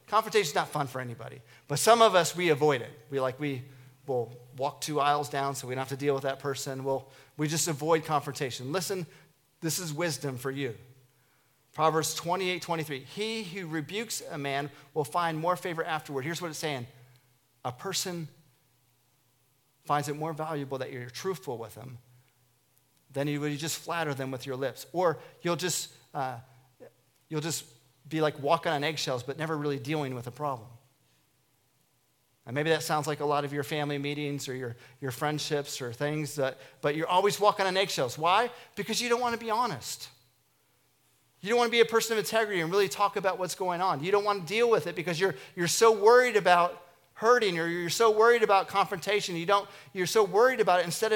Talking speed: 200 wpm